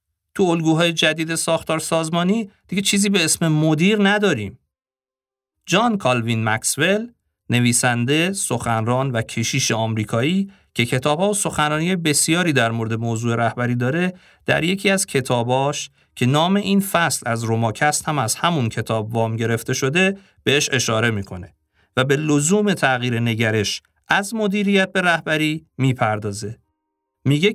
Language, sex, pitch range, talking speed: Persian, male, 115-175 Hz, 130 wpm